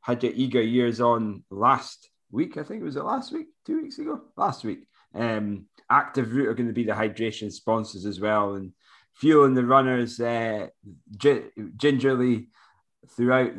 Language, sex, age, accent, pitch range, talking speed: English, male, 20-39, British, 110-135 Hz, 170 wpm